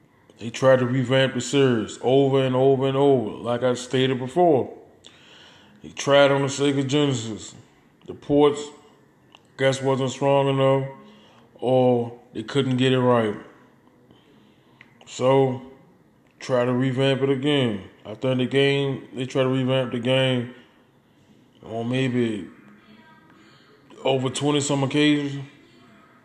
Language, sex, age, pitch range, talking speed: English, male, 20-39, 125-140 Hz, 125 wpm